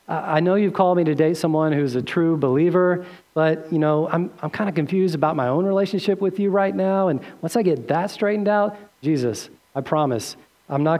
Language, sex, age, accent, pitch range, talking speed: English, male, 40-59, American, 135-165 Hz, 215 wpm